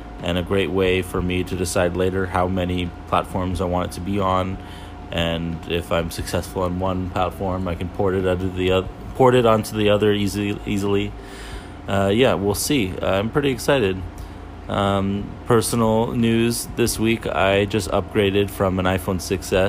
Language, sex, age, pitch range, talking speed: English, male, 30-49, 90-100 Hz, 175 wpm